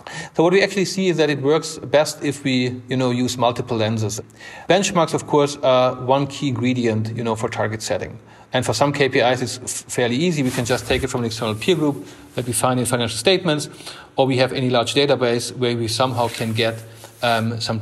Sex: male